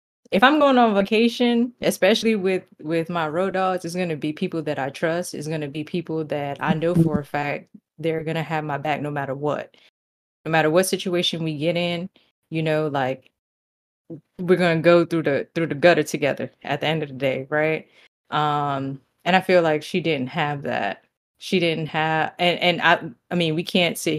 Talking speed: 205 wpm